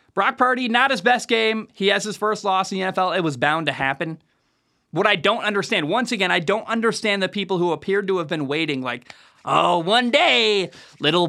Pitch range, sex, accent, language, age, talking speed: 150-200 Hz, male, American, English, 20-39, 220 wpm